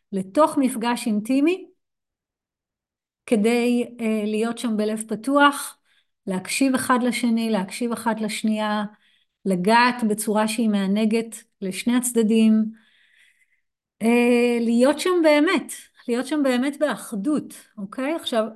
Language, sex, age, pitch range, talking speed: Hebrew, female, 30-49, 200-245 Hz, 105 wpm